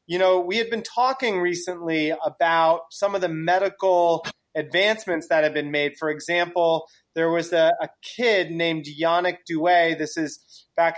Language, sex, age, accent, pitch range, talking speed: English, male, 30-49, American, 155-185 Hz, 165 wpm